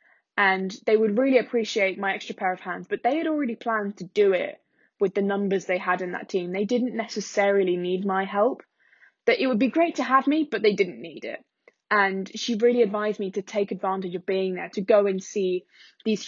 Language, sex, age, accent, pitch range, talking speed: English, female, 20-39, British, 195-240 Hz, 225 wpm